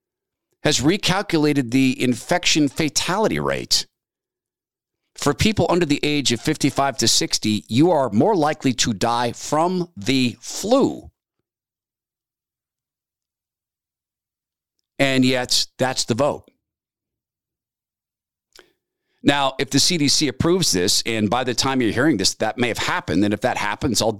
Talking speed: 125 wpm